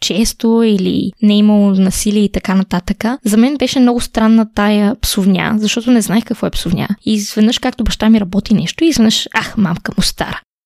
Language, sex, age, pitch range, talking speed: Bulgarian, female, 20-39, 210-255 Hz, 185 wpm